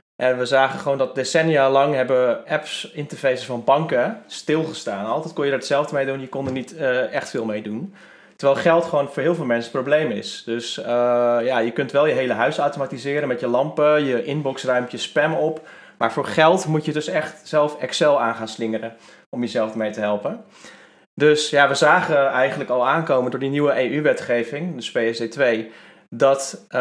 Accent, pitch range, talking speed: Dutch, 125-150 Hz, 195 wpm